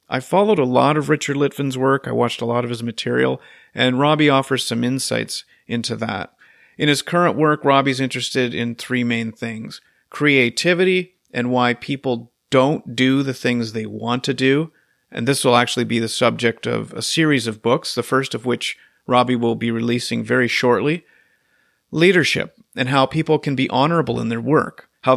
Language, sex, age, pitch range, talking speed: English, male, 40-59, 120-140 Hz, 185 wpm